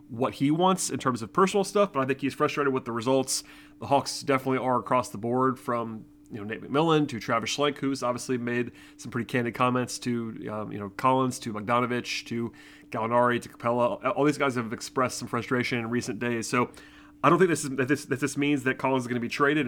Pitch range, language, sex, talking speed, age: 115-135 Hz, English, male, 235 wpm, 30-49